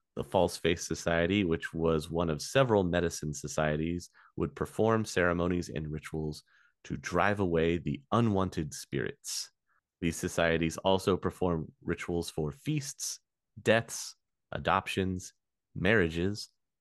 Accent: American